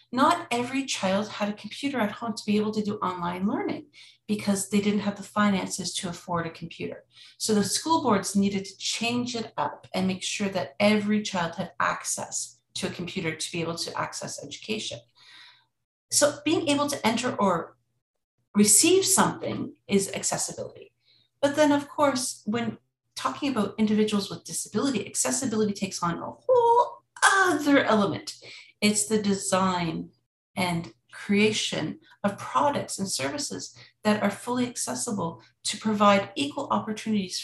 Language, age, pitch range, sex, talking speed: English, 40-59, 180-230 Hz, female, 150 wpm